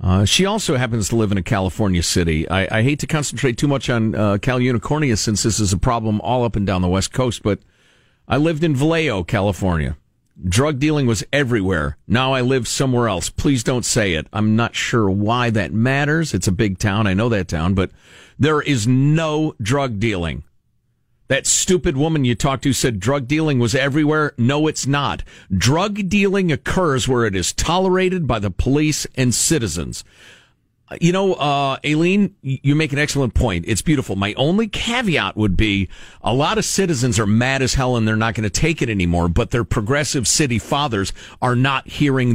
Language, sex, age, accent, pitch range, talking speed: English, male, 50-69, American, 105-145 Hz, 195 wpm